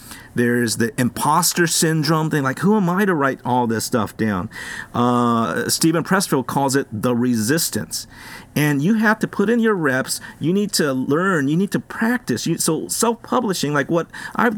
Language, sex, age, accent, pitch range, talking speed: English, male, 50-69, American, 125-195 Hz, 175 wpm